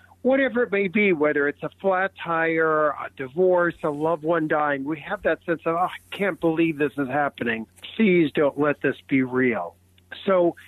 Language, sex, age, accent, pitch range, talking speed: English, male, 50-69, American, 130-175 Hz, 190 wpm